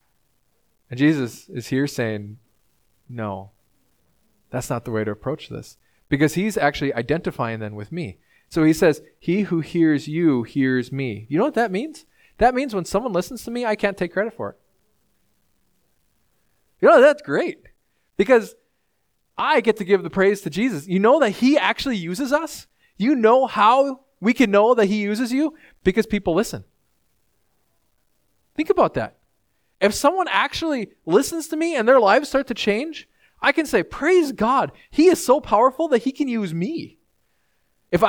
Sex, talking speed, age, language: male, 175 wpm, 20-39, English